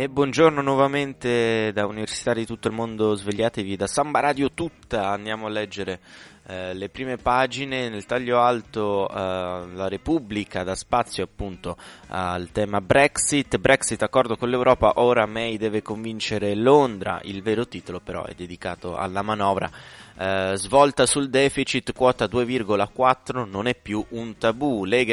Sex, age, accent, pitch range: male, 20-39, native, 95-120 Hz